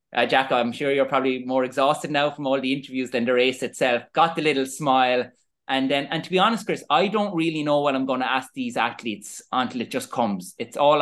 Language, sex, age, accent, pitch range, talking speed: English, male, 20-39, Irish, 125-165 Hz, 245 wpm